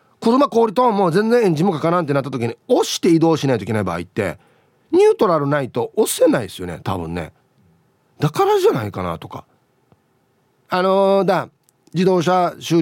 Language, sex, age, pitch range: Japanese, male, 30-49, 120-200 Hz